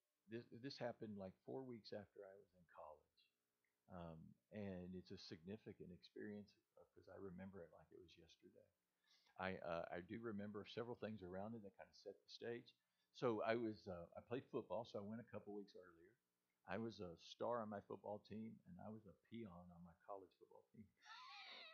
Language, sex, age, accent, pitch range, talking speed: English, male, 50-69, American, 85-115 Hz, 200 wpm